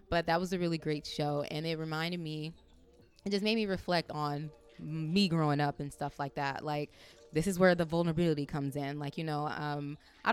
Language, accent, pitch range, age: English, American, 145-170 Hz, 20-39